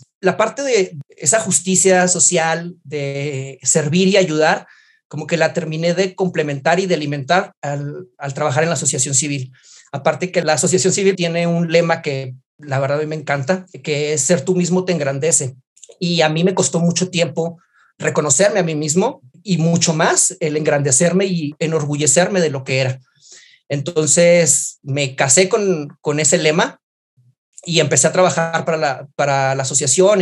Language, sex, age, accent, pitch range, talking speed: Spanish, male, 40-59, Mexican, 145-180 Hz, 170 wpm